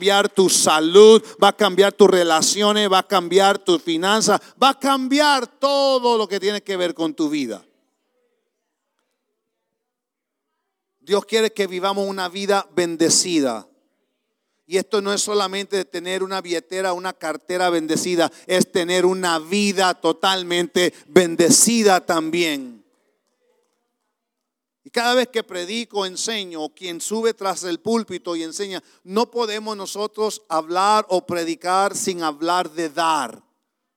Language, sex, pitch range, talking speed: English, male, 180-235 Hz, 125 wpm